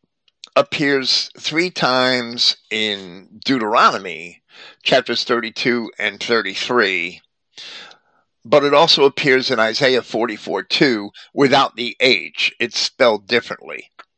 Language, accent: English, American